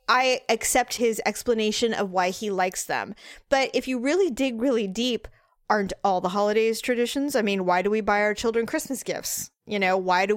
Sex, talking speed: female, 205 wpm